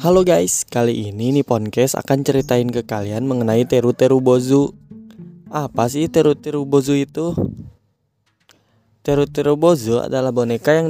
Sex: male